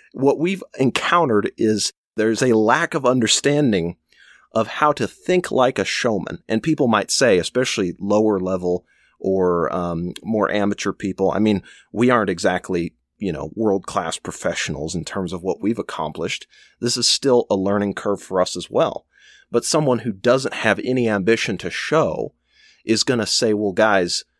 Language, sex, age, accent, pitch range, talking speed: English, male, 30-49, American, 100-130 Hz, 170 wpm